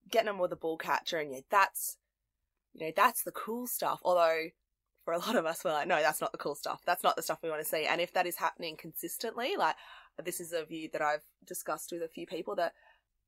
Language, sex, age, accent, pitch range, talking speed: English, female, 20-39, Australian, 160-205 Hz, 260 wpm